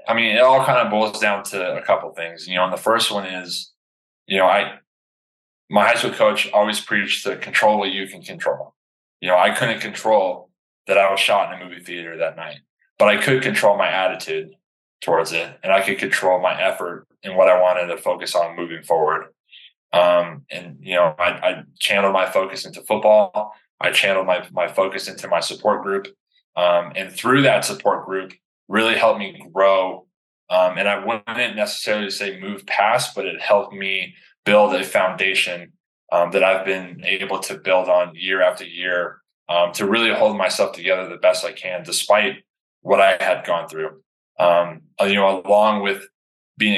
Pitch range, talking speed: 90-105 Hz, 195 wpm